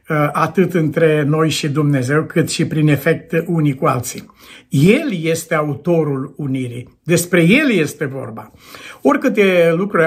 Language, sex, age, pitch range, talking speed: Romanian, male, 60-79, 145-195 Hz, 130 wpm